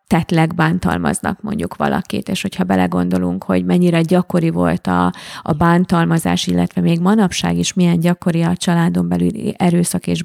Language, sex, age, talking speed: Hungarian, female, 30-49, 145 wpm